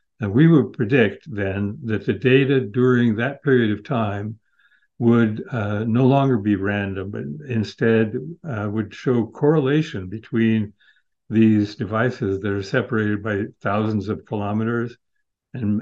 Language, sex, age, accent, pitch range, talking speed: English, male, 60-79, American, 105-125 Hz, 135 wpm